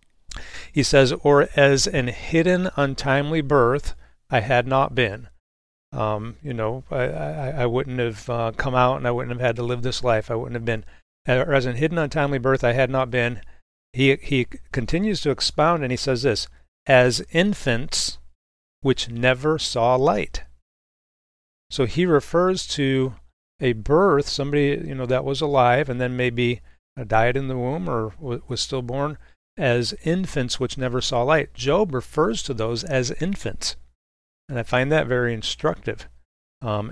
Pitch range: 115-135 Hz